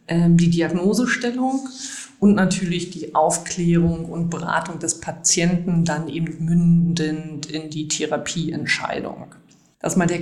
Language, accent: German, German